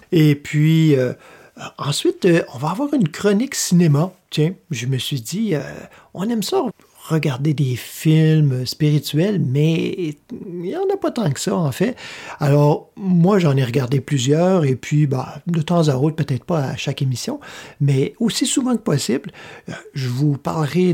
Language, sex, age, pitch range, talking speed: French, male, 50-69, 140-180 Hz, 180 wpm